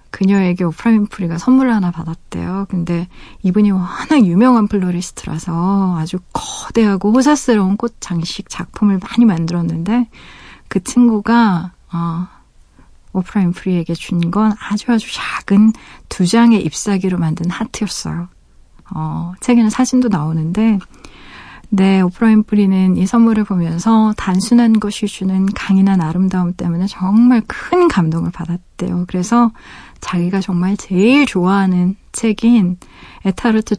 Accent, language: native, Korean